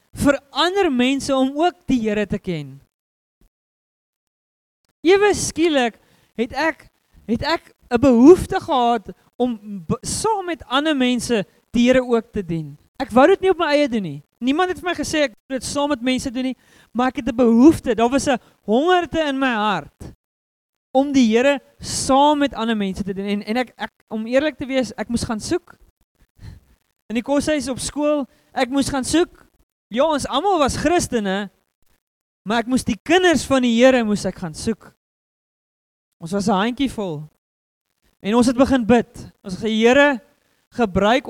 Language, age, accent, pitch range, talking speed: English, 20-39, Dutch, 195-270 Hz, 175 wpm